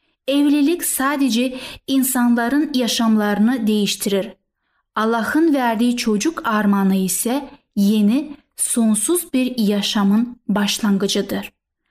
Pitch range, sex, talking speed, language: 215-285 Hz, female, 75 wpm, Turkish